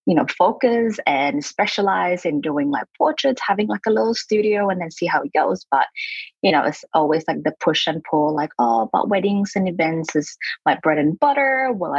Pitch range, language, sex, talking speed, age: 155-240 Hz, English, female, 210 wpm, 20-39